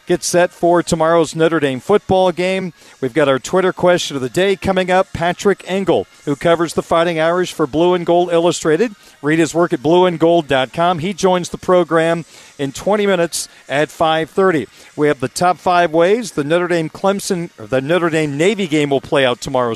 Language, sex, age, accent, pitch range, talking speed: English, male, 40-59, American, 155-185 Hz, 190 wpm